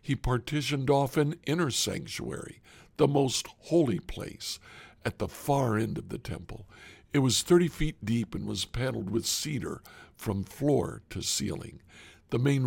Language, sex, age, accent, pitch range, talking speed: English, male, 60-79, American, 110-150 Hz, 155 wpm